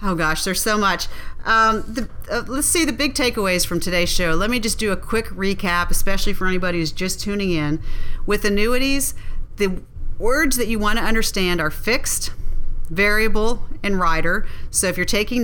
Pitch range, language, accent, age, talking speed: 170-210 Hz, English, American, 40-59, 185 wpm